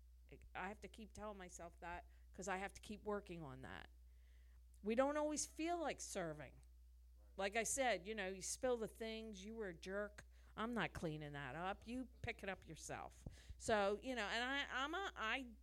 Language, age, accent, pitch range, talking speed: English, 50-69, American, 165-255 Hz, 200 wpm